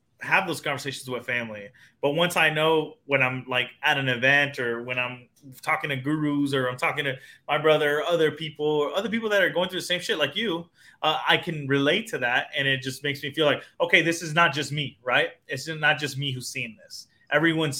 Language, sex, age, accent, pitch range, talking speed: English, male, 20-39, American, 135-160 Hz, 235 wpm